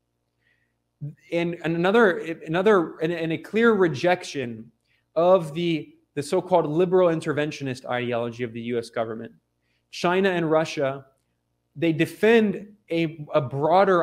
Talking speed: 115 wpm